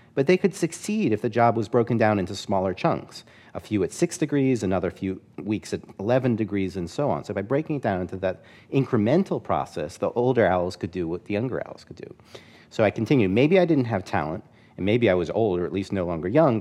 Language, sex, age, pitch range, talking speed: English, male, 40-59, 95-125 Hz, 240 wpm